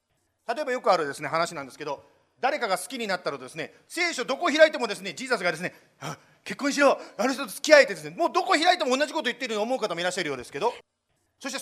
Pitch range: 185-275 Hz